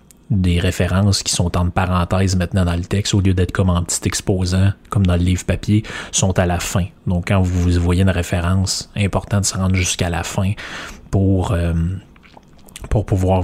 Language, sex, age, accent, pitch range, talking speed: French, male, 30-49, Canadian, 90-100 Hz, 195 wpm